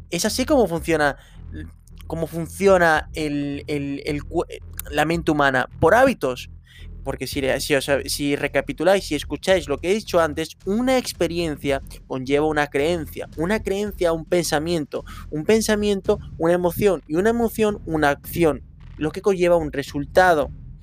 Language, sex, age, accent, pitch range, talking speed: Spanish, male, 20-39, Spanish, 135-170 Hz, 140 wpm